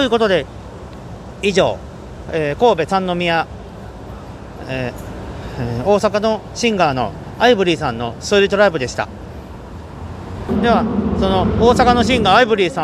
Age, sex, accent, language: 40-59, male, native, Japanese